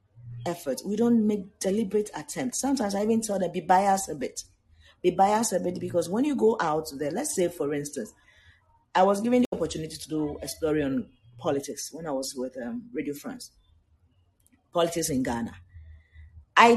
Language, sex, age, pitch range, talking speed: English, female, 40-59, 120-200 Hz, 185 wpm